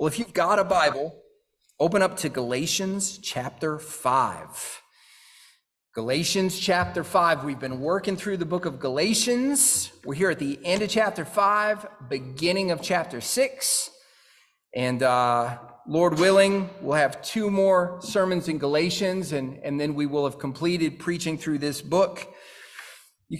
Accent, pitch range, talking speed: American, 140-185 Hz, 150 wpm